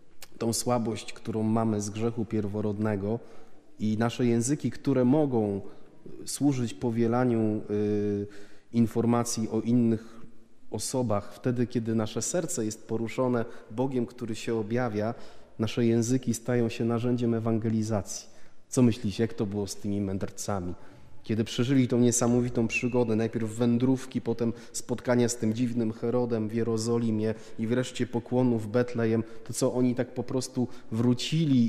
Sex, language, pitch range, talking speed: male, Polish, 110-125 Hz, 130 wpm